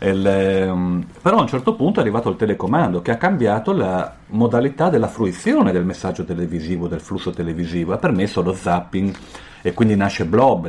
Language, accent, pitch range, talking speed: Italian, native, 90-110 Hz, 175 wpm